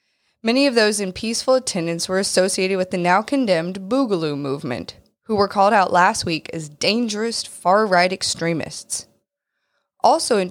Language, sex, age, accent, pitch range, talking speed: English, female, 20-39, American, 175-245 Hz, 145 wpm